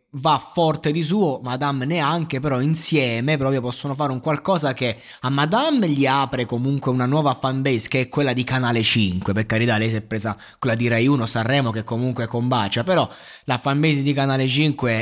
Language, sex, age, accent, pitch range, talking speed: Italian, male, 20-39, native, 115-145 Hz, 190 wpm